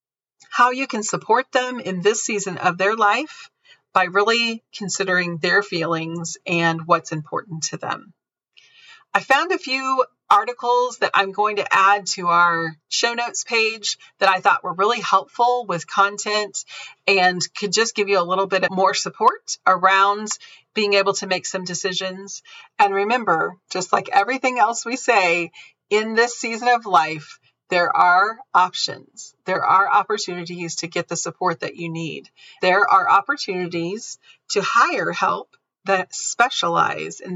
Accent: American